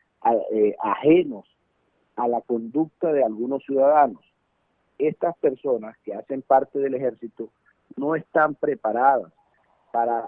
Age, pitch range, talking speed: 50-69, 115-145 Hz, 115 wpm